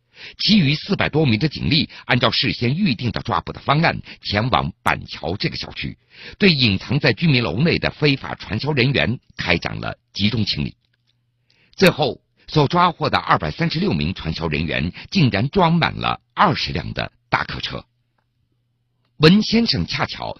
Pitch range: 105-150 Hz